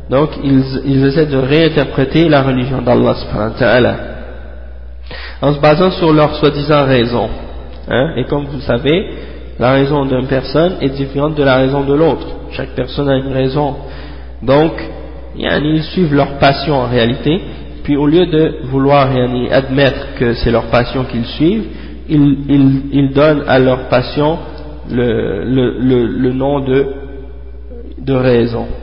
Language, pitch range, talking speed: French, 120-145 Hz, 150 wpm